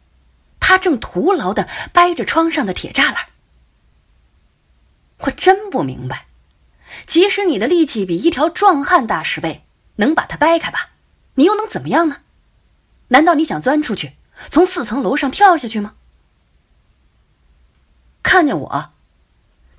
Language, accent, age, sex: Chinese, native, 30-49, female